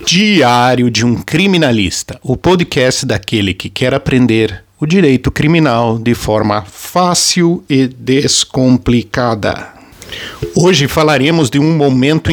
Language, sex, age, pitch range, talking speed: Portuguese, male, 50-69, 120-170 Hz, 110 wpm